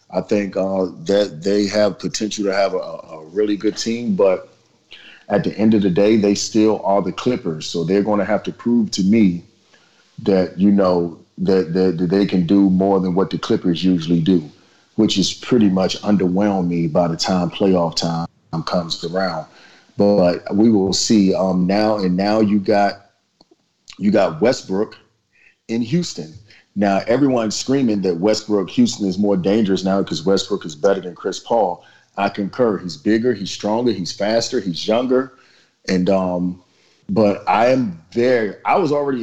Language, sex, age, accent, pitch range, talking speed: English, male, 40-59, American, 90-110 Hz, 175 wpm